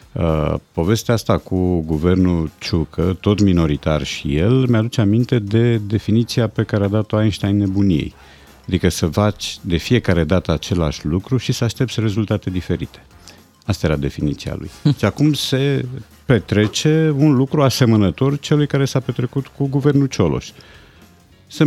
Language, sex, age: Romanian, male, 50-69